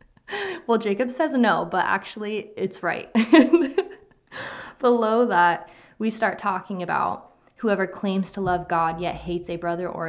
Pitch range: 175-210 Hz